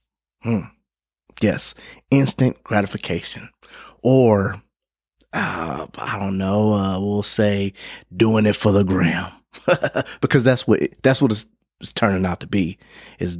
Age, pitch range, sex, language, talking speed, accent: 30-49, 95-115 Hz, male, English, 135 wpm, American